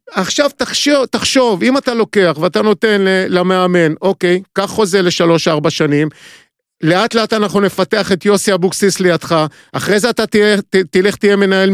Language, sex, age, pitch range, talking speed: Hebrew, male, 50-69, 165-235 Hz, 155 wpm